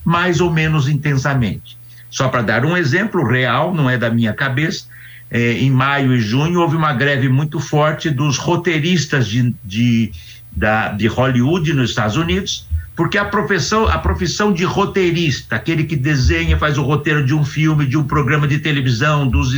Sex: male